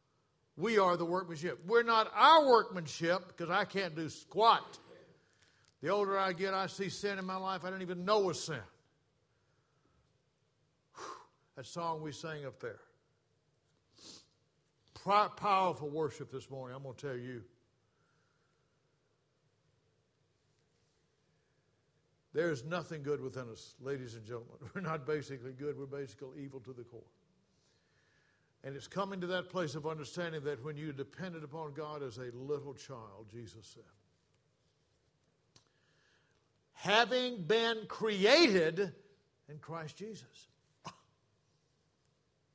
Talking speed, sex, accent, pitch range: 125 wpm, male, American, 135-190 Hz